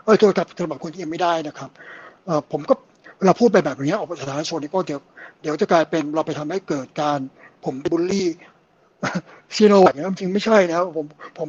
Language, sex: Thai, male